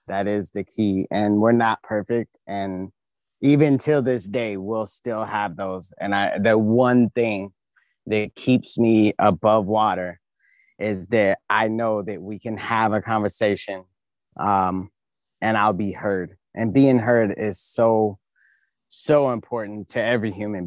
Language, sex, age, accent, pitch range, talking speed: English, male, 20-39, American, 105-145 Hz, 150 wpm